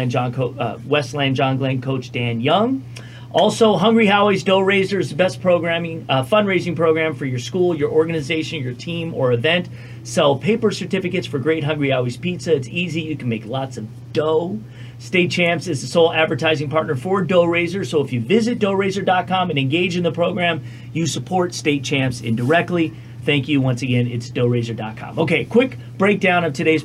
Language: English